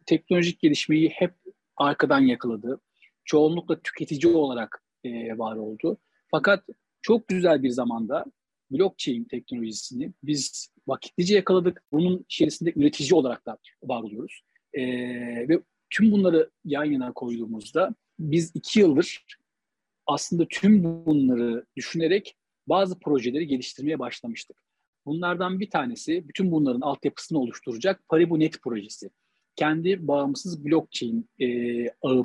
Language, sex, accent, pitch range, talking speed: Turkish, male, native, 135-185 Hz, 110 wpm